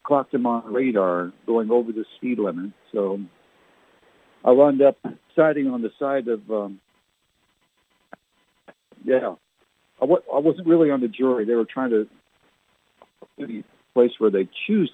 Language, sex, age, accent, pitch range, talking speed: English, male, 60-79, American, 105-130 Hz, 140 wpm